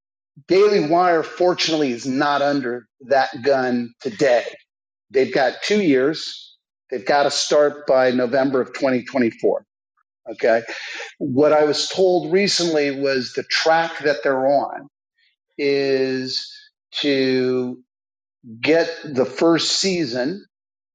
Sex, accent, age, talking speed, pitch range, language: male, American, 50-69, 110 wpm, 125-165 Hz, English